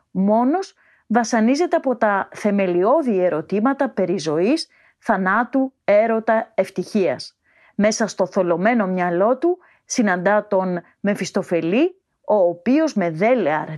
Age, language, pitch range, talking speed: 30-49, Greek, 190-265 Hz, 100 wpm